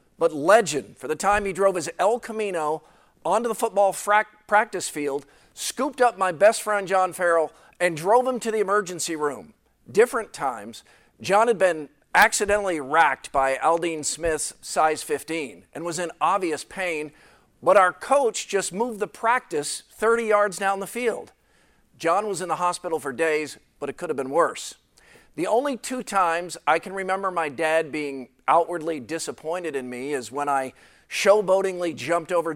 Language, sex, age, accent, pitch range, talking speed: English, male, 50-69, American, 155-205 Hz, 170 wpm